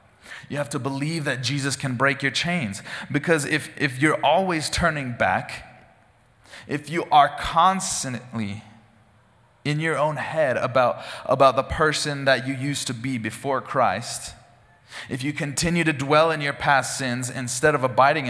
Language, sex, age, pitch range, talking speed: English, male, 20-39, 115-145 Hz, 155 wpm